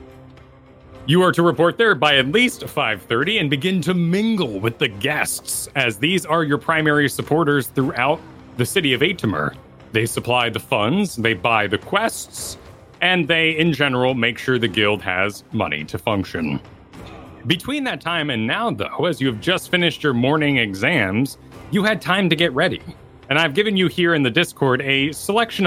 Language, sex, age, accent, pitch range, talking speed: English, male, 30-49, American, 115-170 Hz, 180 wpm